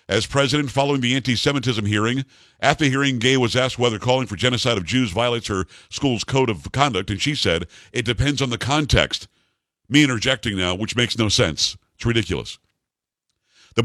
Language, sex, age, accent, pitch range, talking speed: English, male, 50-69, American, 115-140 Hz, 180 wpm